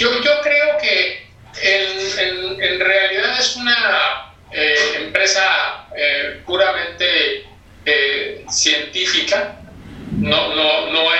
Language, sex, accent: Spanish, male, Mexican